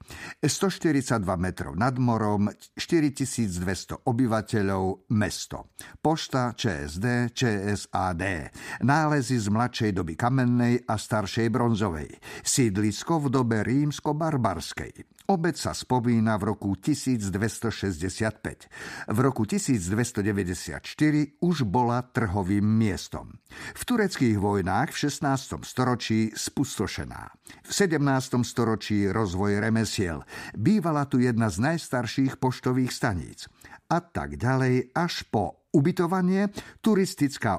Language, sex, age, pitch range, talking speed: Slovak, male, 50-69, 105-135 Hz, 95 wpm